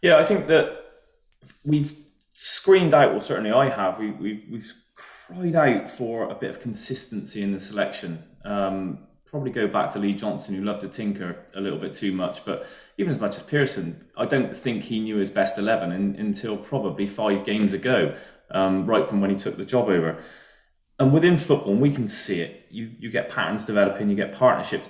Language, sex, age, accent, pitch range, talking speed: English, male, 20-39, British, 100-125 Hz, 205 wpm